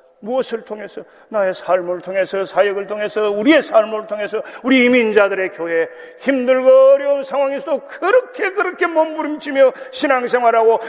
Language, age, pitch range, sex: Korean, 40-59, 175-285 Hz, male